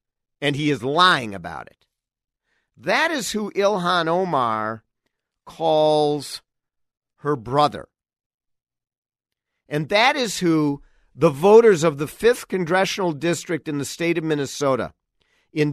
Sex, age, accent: male, 50-69, American